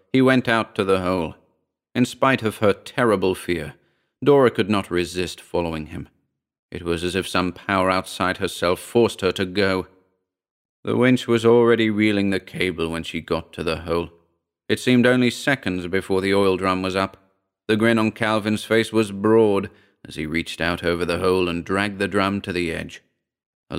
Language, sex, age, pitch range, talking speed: English, male, 40-59, 85-105 Hz, 190 wpm